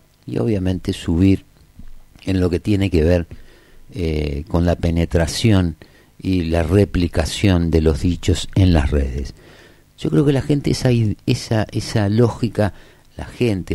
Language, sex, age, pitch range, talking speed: Spanish, male, 50-69, 80-105 Hz, 140 wpm